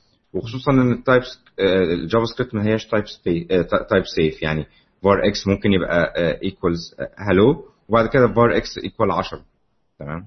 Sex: male